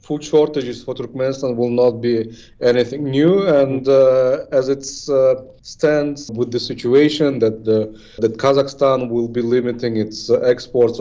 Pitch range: 125-145 Hz